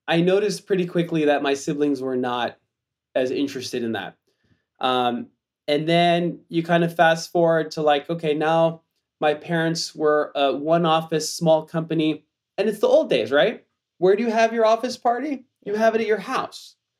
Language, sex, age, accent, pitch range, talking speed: English, male, 20-39, American, 160-210 Hz, 185 wpm